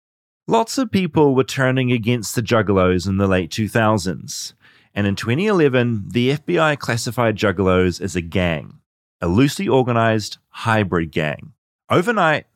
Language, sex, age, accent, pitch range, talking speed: English, male, 30-49, Australian, 95-125 Hz, 135 wpm